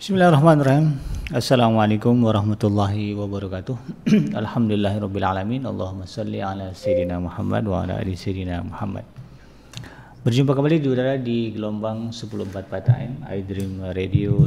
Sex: male